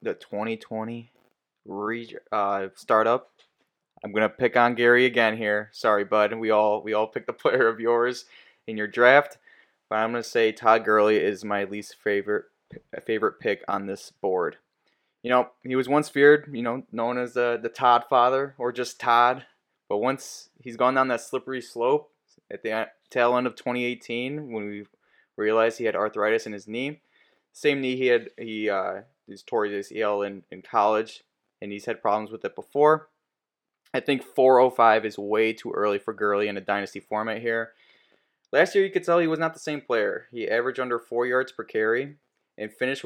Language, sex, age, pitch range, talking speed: English, male, 20-39, 110-130 Hz, 190 wpm